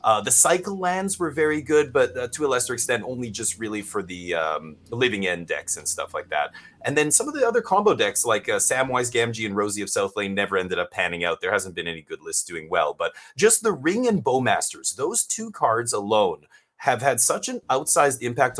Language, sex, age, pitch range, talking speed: English, male, 30-49, 105-155 Hz, 230 wpm